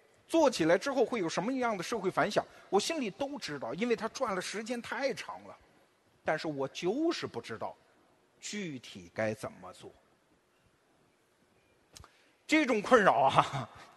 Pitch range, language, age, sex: 180-285 Hz, Chinese, 50-69, male